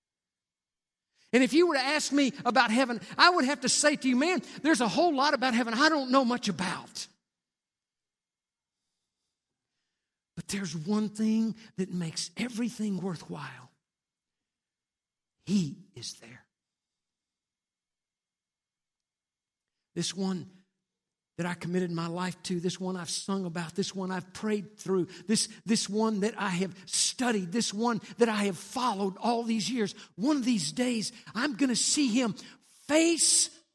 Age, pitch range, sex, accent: 50-69, 170-245 Hz, male, American